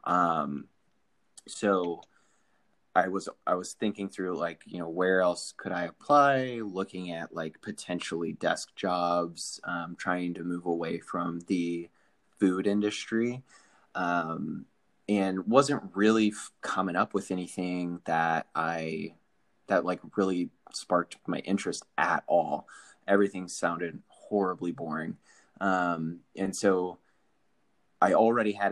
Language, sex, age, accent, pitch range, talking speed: English, male, 20-39, American, 85-100 Hz, 125 wpm